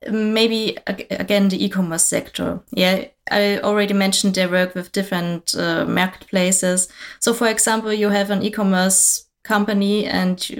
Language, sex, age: English, female, 20-39